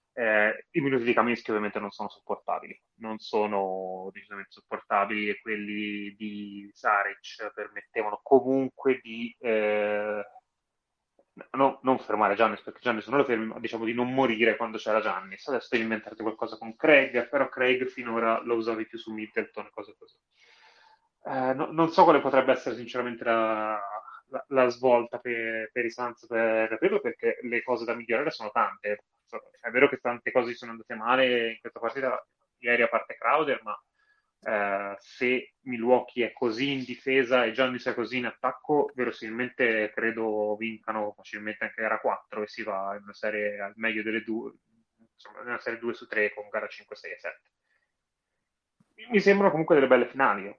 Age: 20-39